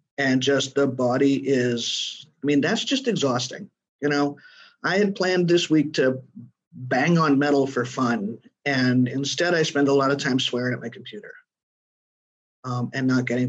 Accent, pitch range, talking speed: American, 130-165 Hz, 175 wpm